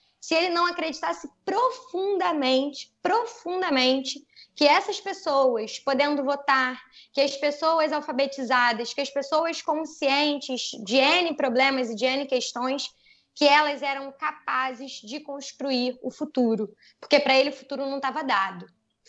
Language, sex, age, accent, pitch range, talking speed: Portuguese, female, 20-39, Brazilian, 260-345 Hz, 135 wpm